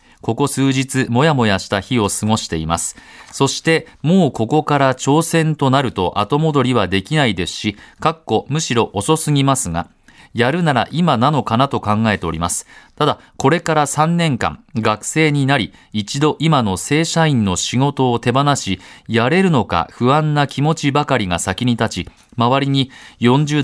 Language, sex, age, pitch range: Japanese, male, 40-59, 110-145 Hz